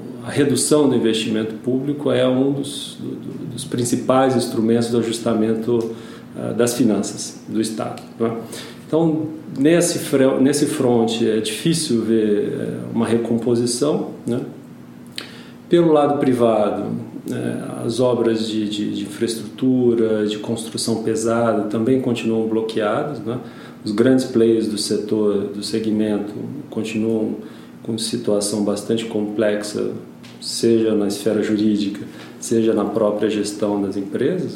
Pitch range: 110-130 Hz